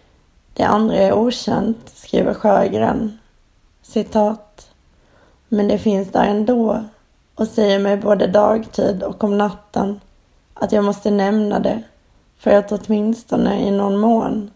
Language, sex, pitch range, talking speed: Swedish, female, 200-220 Hz, 130 wpm